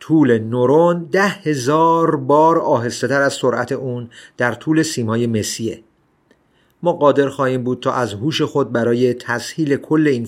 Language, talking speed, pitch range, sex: Persian, 150 wpm, 120-145 Hz, male